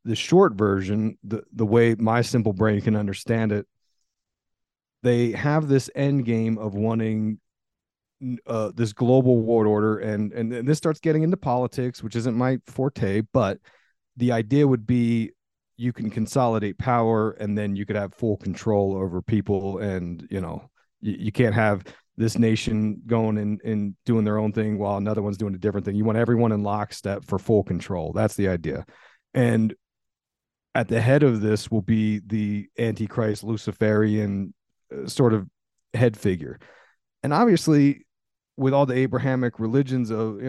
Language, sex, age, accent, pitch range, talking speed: English, male, 40-59, American, 105-125 Hz, 165 wpm